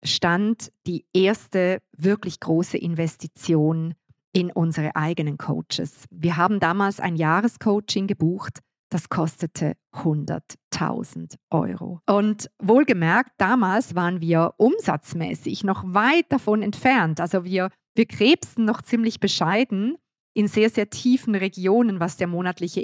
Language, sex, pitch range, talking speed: German, female, 165-205 Hz, 120 wpm